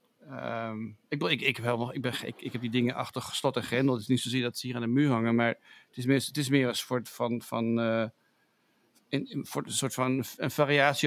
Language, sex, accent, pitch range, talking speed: English, male, Dutch, 120-145 Hz, 215 wpm